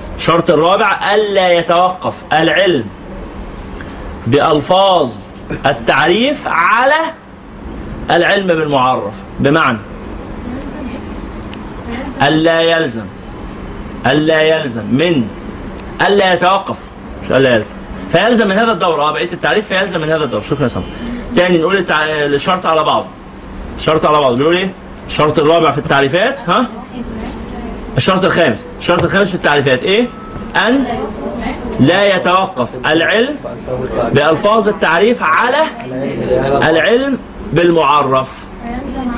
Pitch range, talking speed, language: 150-220 Hz, 100 wpm, Arabic